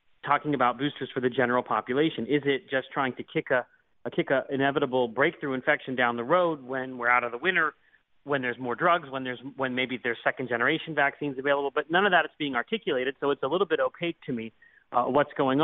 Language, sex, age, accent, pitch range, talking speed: English, male, 30-49, American, 130-150 Hz, 235 wpm